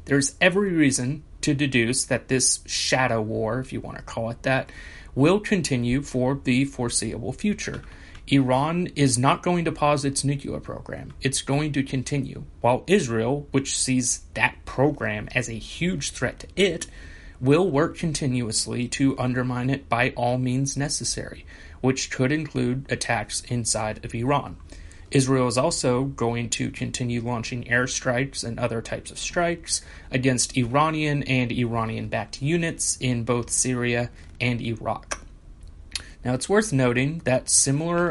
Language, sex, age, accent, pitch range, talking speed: English, male, 30-49, American, 115-140 Hz, 145 wpm